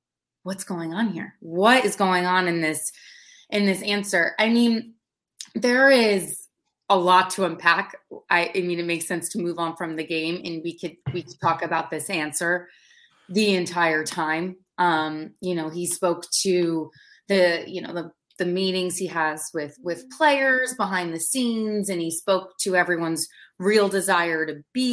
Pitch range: 160-195 Hz